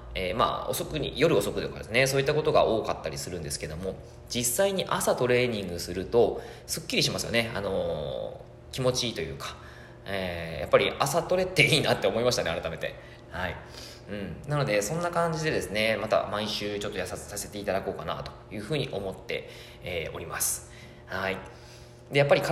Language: Japanese